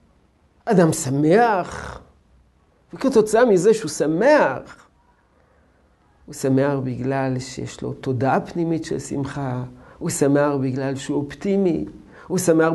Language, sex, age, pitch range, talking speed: Hebrew, male, 50-69, 120-170 Hz, 105 wpm